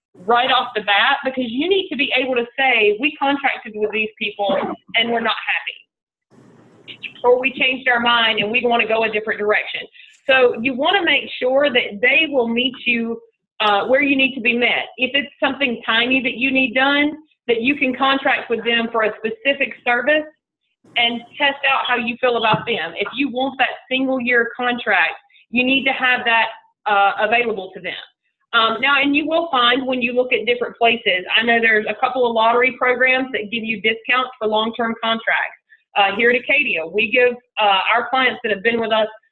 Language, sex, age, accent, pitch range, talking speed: English, female, 30-49, American, 225-270 Hz, 205 wpm